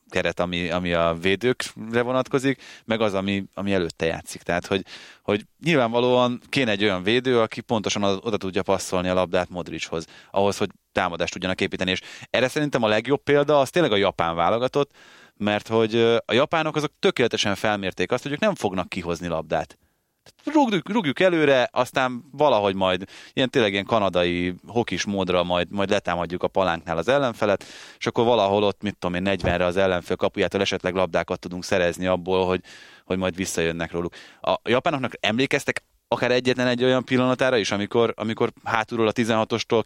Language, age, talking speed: Hungarian, 30-49, 170 wpm